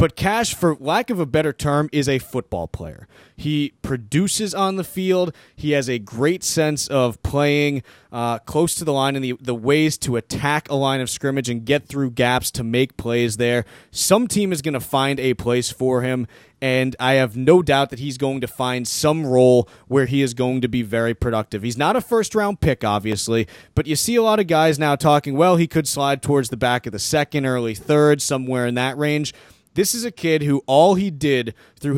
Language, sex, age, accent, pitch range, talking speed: English, male, 30-49, American, 125-155 Hz, 220 wpm